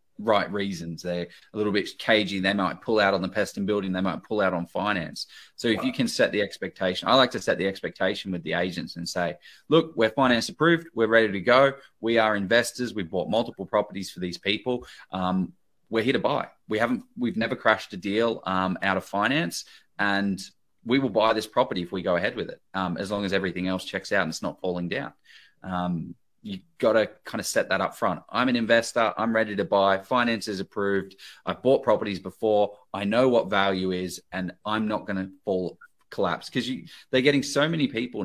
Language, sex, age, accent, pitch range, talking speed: English, male, 20-39, Australian, 95-115 Hz, 225 wpm